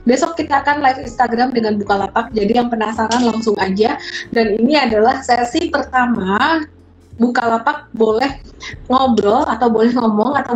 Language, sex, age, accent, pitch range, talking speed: Indonesian, female, 20-39, native, 205-250 Hz, 135 wpm